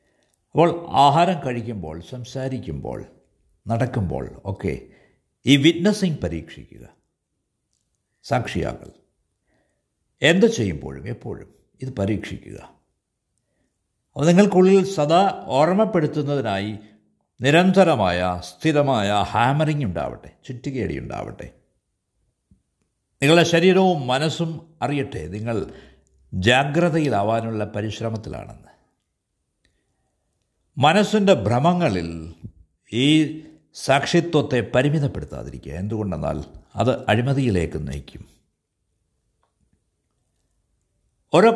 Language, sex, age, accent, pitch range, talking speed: Malayalam, male, 60-79, native, 90-150 Hz, 60 wpm